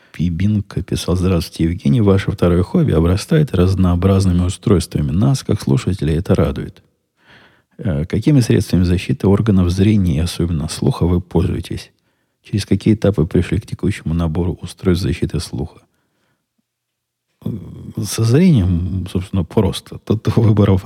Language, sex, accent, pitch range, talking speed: Russian, male, native, 85-105 Hz, 120 wpm